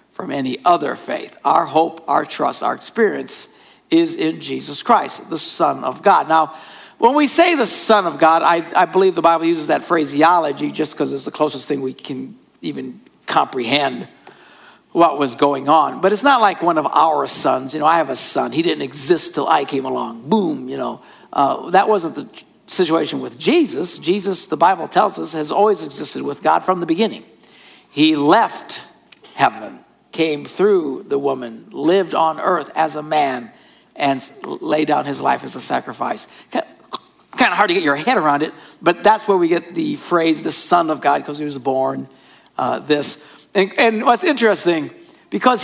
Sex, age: male, 60-79